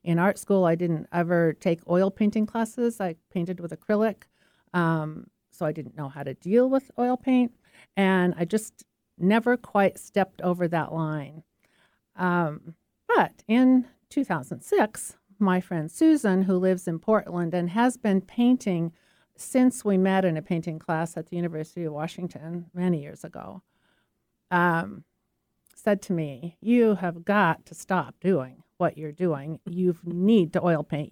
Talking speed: 160 wpm